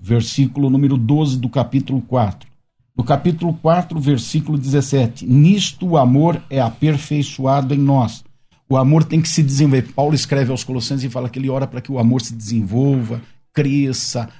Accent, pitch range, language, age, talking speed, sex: Brazilian, 130-160 Hz, Portuguese, 60-79, 165 wpm, male